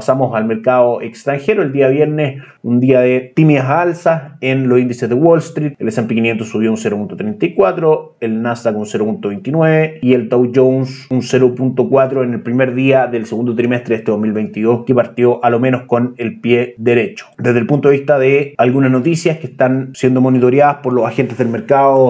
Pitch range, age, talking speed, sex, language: 120-145 Hz, 30-49, 190 wpm, male, Spanish